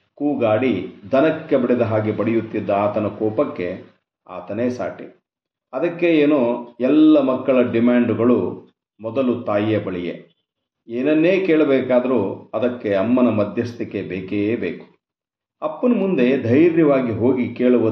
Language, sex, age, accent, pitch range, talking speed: Kannada, male, 50-69, native, 110-135 Hz, 95 wpm